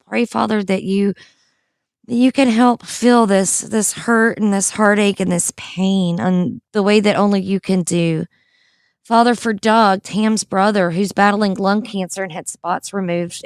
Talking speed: 175 wpm